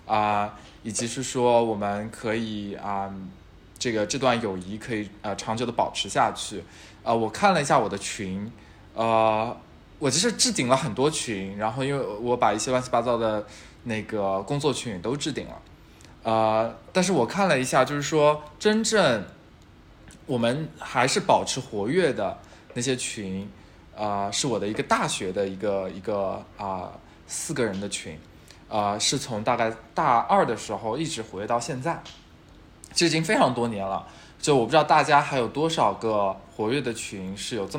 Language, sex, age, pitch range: Chinese, male, 20-39, 100-125 Hz